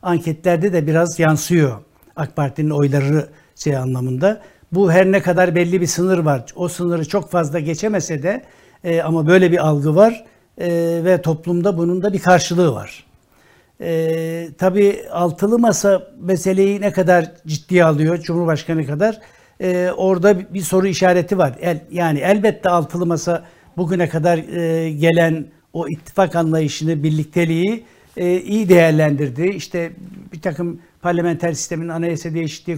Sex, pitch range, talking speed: male, 160-185 Hz, 130 wpm